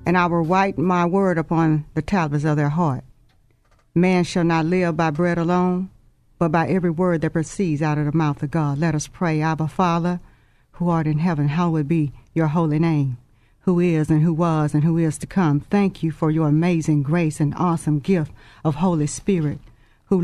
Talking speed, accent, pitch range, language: 200 wpm, American, 145-175 Hz, English